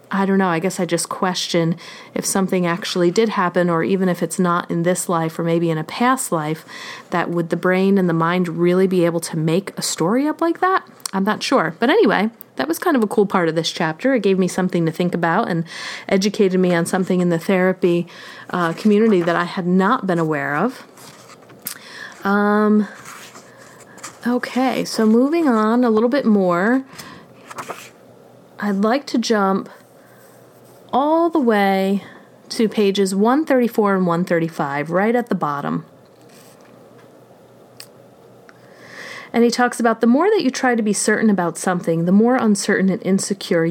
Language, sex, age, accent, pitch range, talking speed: English, female, 30-49, American, 175-225 Hz, 175 wpm